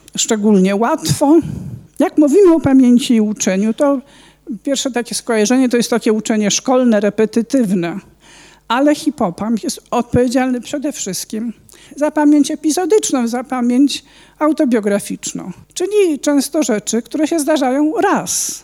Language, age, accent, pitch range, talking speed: Polish, 50-69, native, 210-295 Hz, 120 wpm